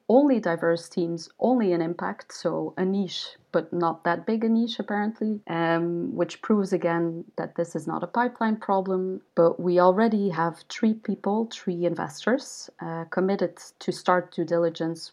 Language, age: English, 30-49